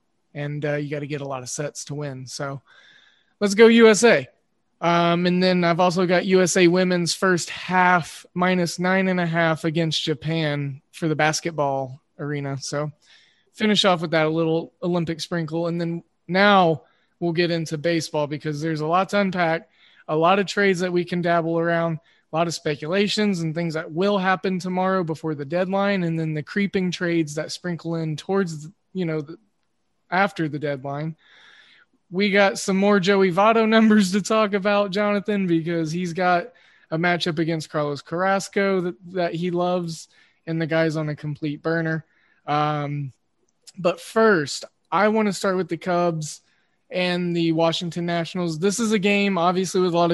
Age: 20-39